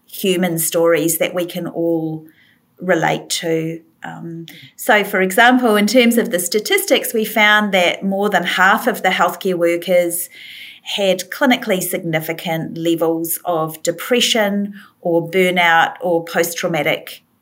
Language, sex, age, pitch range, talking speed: English, female, 40-59, 170-200 Hz, 125 wpm